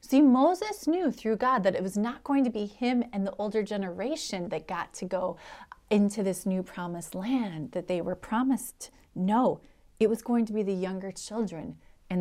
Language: English